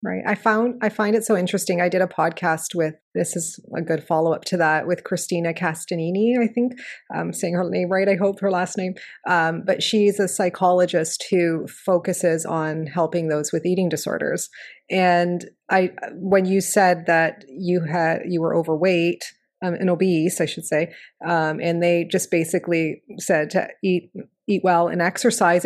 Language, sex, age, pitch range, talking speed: English, female, 30-49, 170-195 Hz, 180 wpm